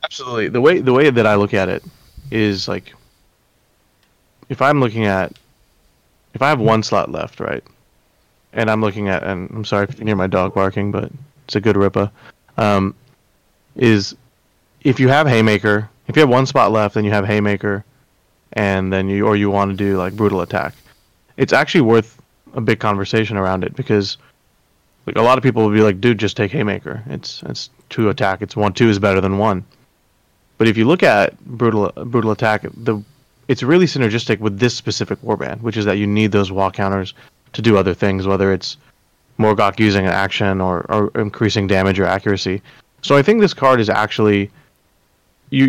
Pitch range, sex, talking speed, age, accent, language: 100-115 Hz, male, 195 wpm, 20-39, American, English